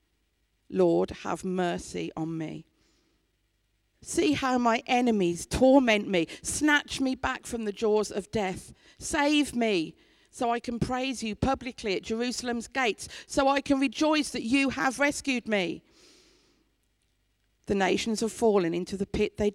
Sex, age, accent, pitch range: female, 50-69, British, 160-220 Hz